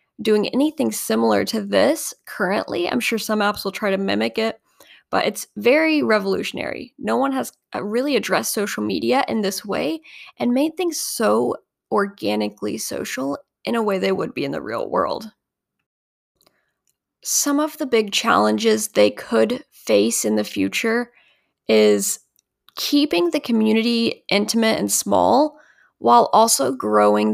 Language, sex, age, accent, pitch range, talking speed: English, female, 10-29, American, 195-275 Hz, 145 wpm